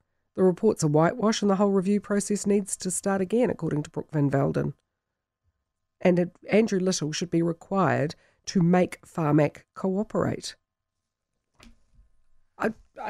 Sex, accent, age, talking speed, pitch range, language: female, Australian, 50-69, 135 wpm, 140-180 Hz, English